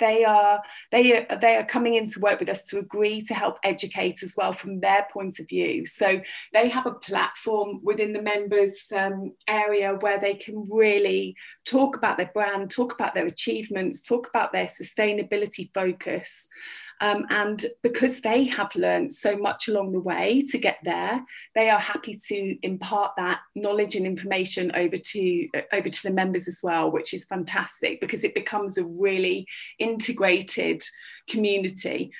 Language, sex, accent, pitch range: English, female, British, 195-230 Hz